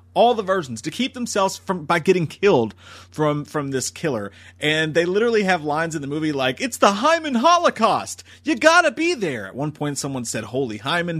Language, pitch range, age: English, 130-200 Hz, 30-49